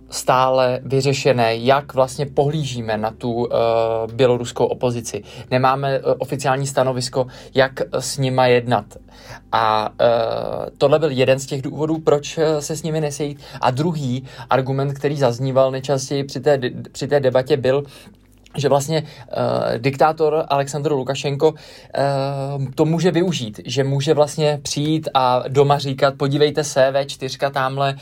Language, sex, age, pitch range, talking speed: Czech, male, 20-39, 130-145 Hz, 135 wpm